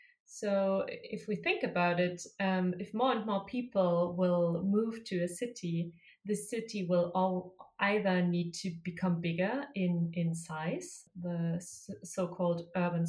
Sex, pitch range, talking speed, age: female, 175-205 Hz, 140 wpm, 30-49